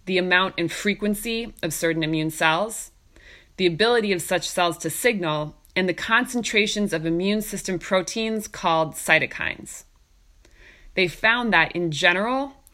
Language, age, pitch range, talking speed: English, 20-39, 170-210 Hz, 135 wpm